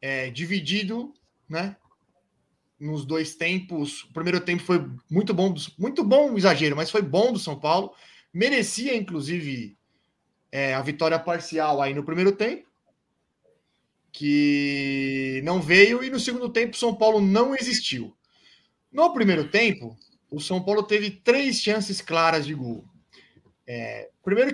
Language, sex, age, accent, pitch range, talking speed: Portuguese, male, 20-39, Brazilian, 150-205 Hz, 130 wpm